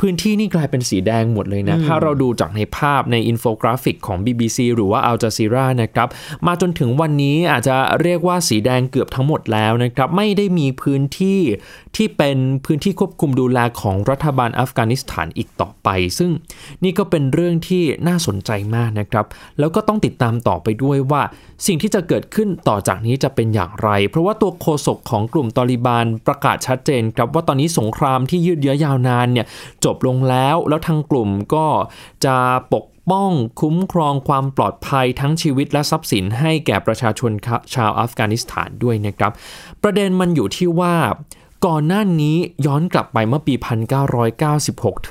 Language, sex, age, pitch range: Thai, male, 20-39, 115-165 Hz